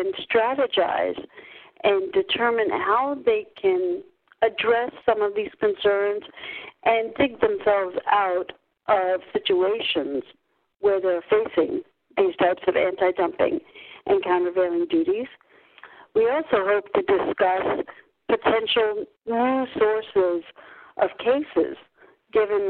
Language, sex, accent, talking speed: English, female, American, 100 wpm